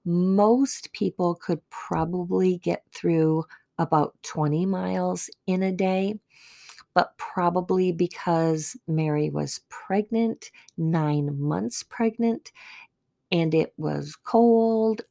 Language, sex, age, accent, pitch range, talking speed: English, female, 40-59, American, 145-185 Hz, 100 wpm